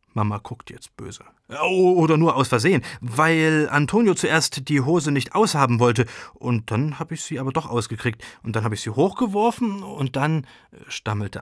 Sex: male